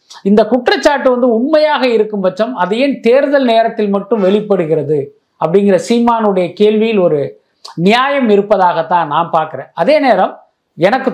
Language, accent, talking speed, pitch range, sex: Tamil, native, 125 wpm, 180-230 Hz, male